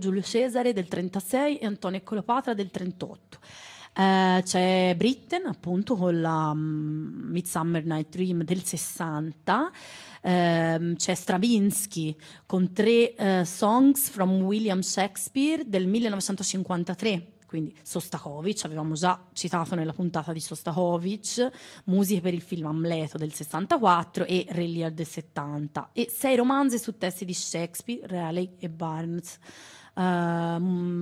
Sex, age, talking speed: female, 30-49, 125 wpm